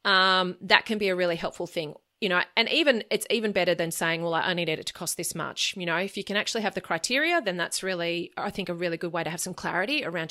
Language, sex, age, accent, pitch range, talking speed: English, female, 30-49, Australian, 170-210 Hz, 285 wpm